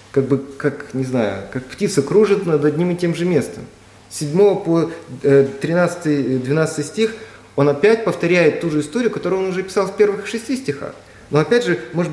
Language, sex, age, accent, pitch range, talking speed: Russian, male, 30-49, native, 130-185 Hz, 185 wpm